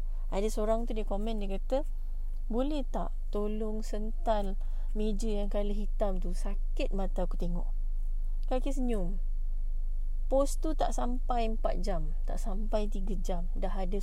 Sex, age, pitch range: female, 20-39, 195-250 Hz